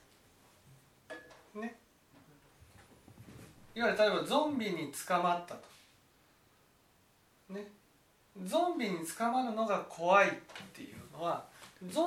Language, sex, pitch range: Japanese, male, 190-305 Hz